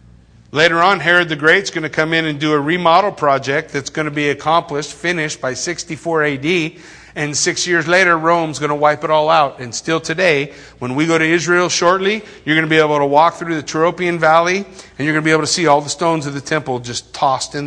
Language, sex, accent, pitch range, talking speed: English, male, American, 130-170 Hz, 225 wpm